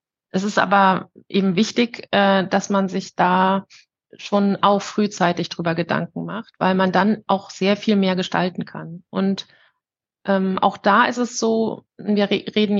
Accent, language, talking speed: German, German, 150 wpm